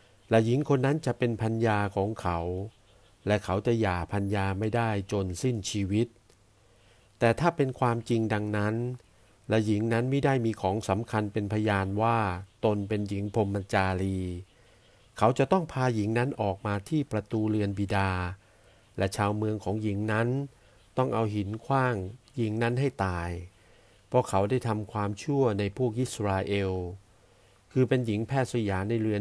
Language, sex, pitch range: Thai, male, 95-115 Hz